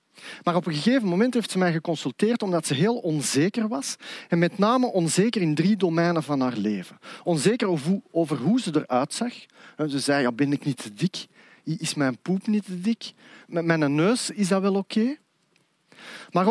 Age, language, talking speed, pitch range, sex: 40-59, Dutch, 205 wpm, 155-215 Hz, male